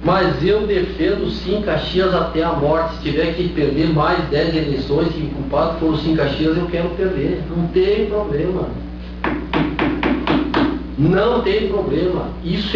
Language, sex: Portuguese, male